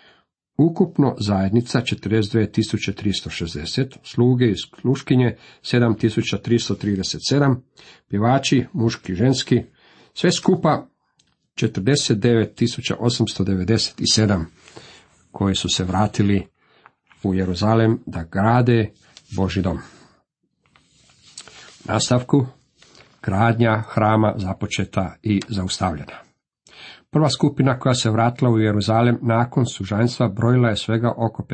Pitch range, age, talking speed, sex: 100-125 Hz, 50-69, 80 wpm, male